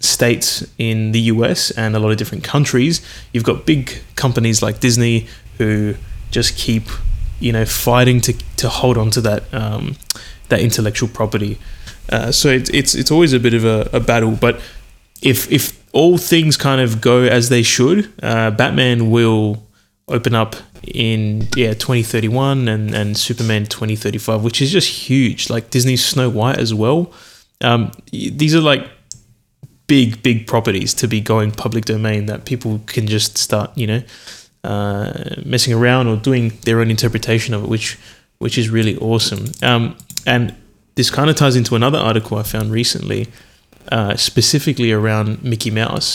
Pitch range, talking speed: 110-125 Hz, 165 wpm